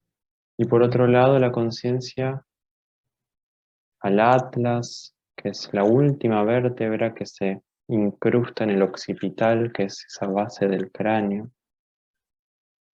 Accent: Argentinian